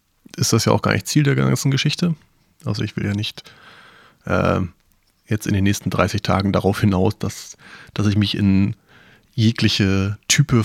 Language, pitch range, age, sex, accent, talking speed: German, 100-125 Hz, 30-49, male, German, 175 wpm